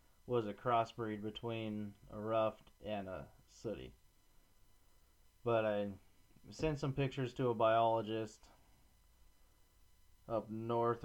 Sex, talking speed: male, 105 wpm